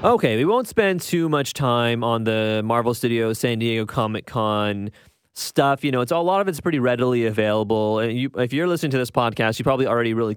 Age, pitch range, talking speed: 30-49, 115-155 Hz, 215 wpm